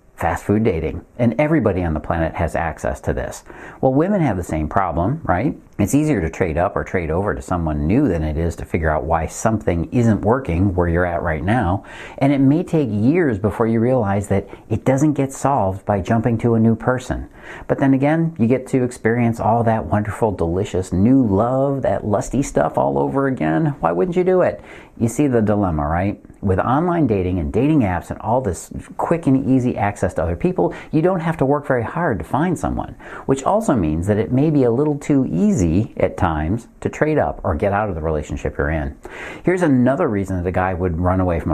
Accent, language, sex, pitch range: American, English, male, 85-125 Hz